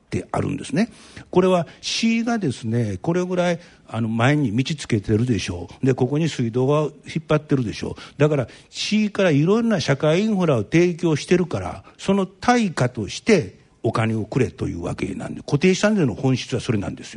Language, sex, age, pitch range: Japanese, male, 60-79, 130-195 Hz